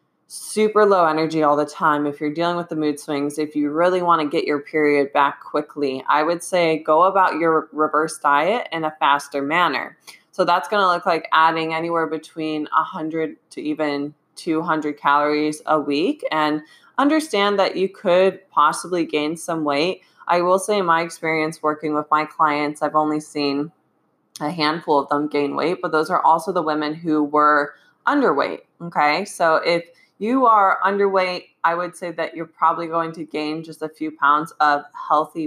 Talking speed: 185 wpm